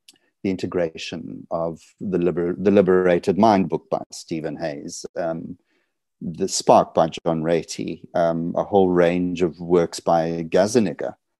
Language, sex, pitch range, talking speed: English, male, 80-95 Hz, 135 wpm